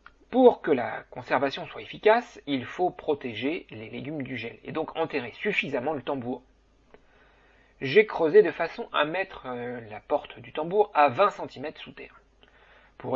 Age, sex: 40-59, male